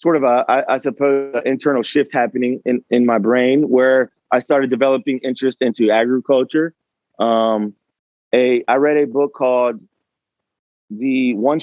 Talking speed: 155 wpm